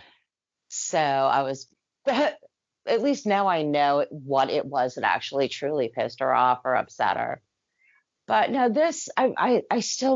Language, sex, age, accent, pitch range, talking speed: English, female, 40-59, American, 150-235 Hz, 160 wpm